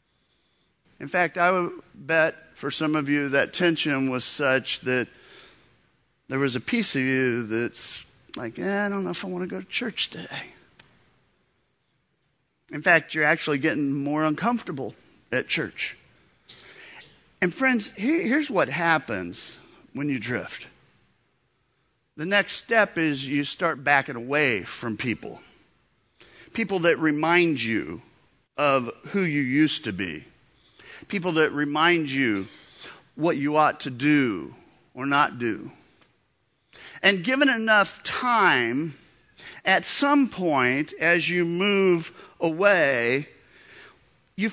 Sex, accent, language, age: male, American, English, 50-69